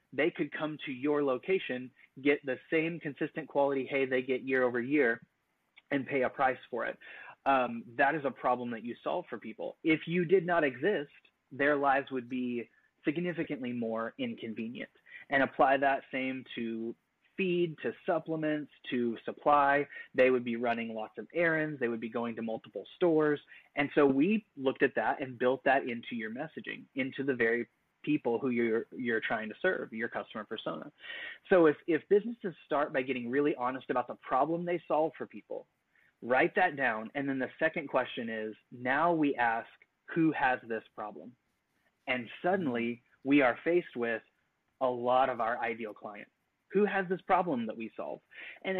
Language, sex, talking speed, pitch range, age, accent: English, male, 180 wpm, 120-160 Hz, 20-39, American